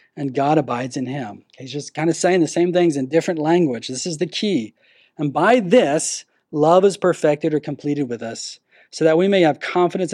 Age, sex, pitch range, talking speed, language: 40-59, male, 145-180 Hz, 215 wpm, English